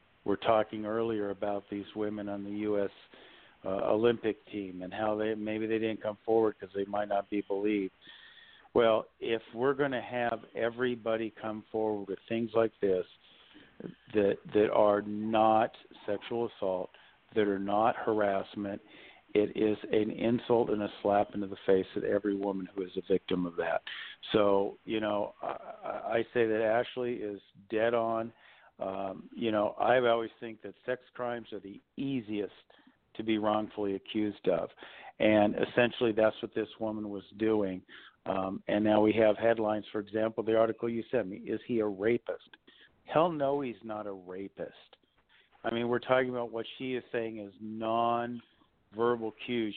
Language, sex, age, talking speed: English, male, 50-69, 170 wpm